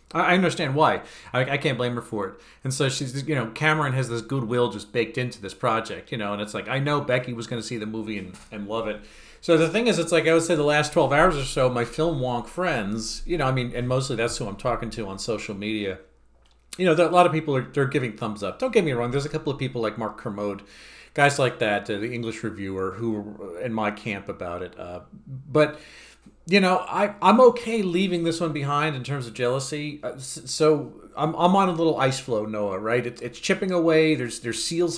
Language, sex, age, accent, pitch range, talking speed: English, male, 40-59, American, 115-160 Hz, 250 wpm